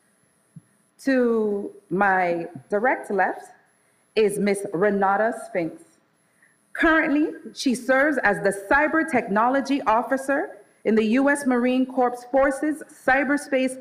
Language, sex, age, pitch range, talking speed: English, female, 40-59, 200-275 Hz, 100 wpm